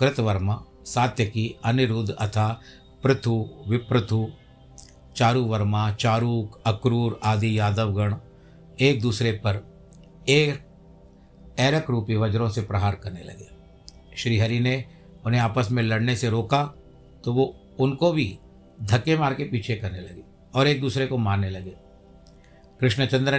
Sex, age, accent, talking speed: male, 60-79, native, 125 wpm